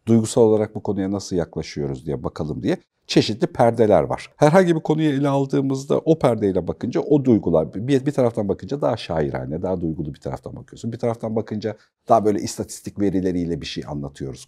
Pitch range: 90-135 Hz